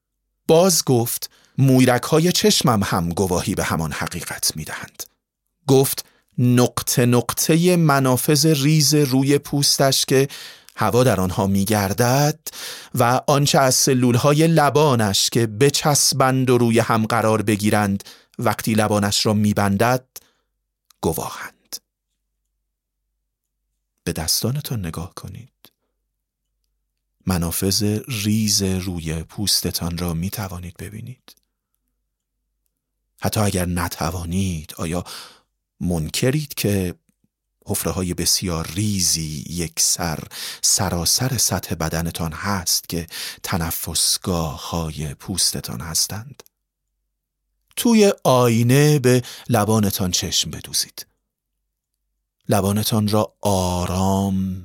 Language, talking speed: Persian, 90 wpm